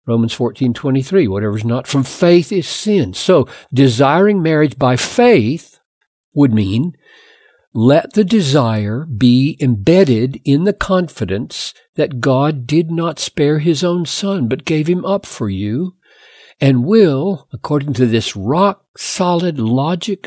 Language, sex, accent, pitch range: English, male, American, 120-180 Hz